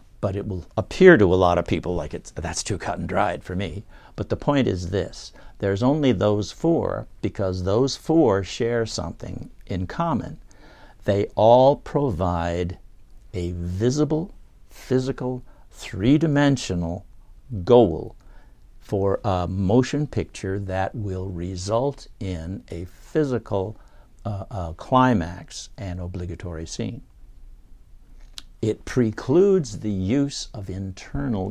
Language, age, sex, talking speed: English, 60-79, male, 120 wpm